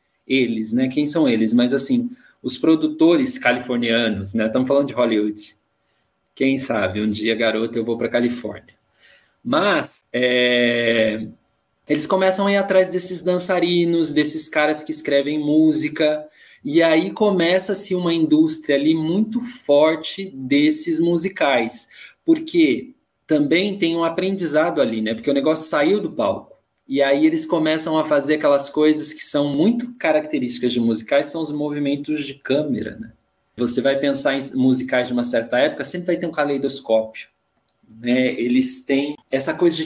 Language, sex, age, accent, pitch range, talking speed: Portuguese, male, 20-39, Brazilian, 125-170 Hz, 150 wpm